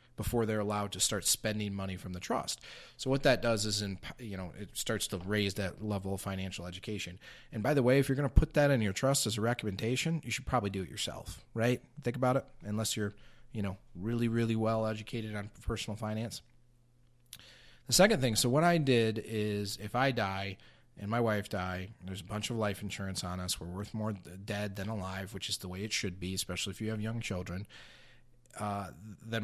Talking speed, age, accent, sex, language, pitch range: 220 wpm, 30-49, American, male, English, 95-115 Hz